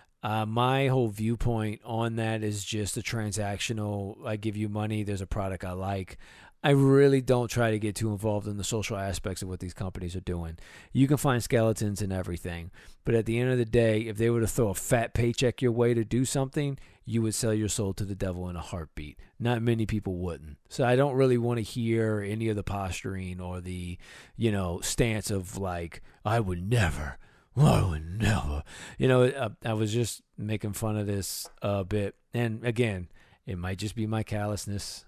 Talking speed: 210 wpm